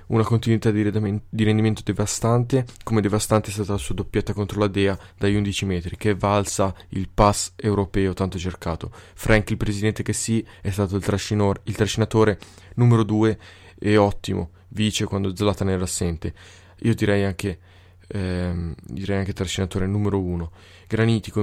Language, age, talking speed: Italian, 20-39, 155 wpm